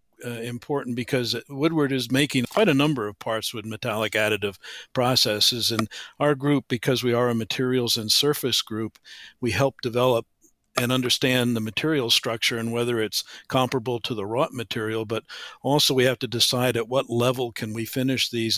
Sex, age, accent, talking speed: male, 50-69, American, 180 wpm